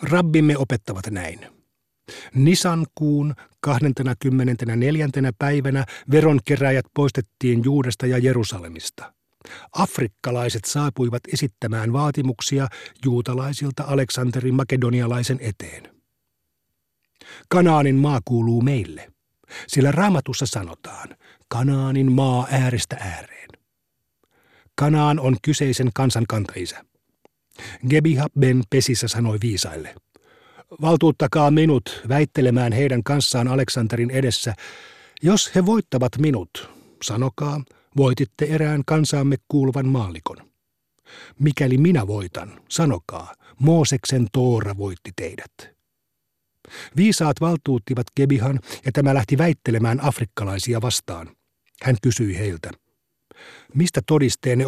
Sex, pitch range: male, 120-145 Hz